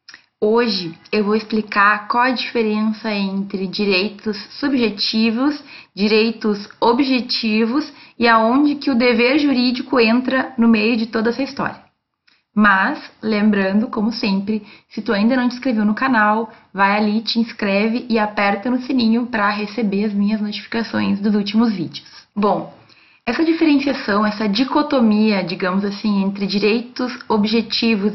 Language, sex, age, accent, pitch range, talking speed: Portuguese, female, 20-39, Brazilian, 210-250 Hz, 135 wpm